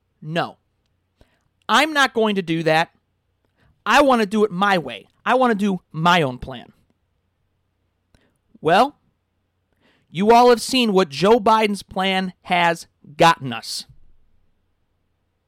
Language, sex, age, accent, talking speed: English, male, 40-59, American, 130 wpm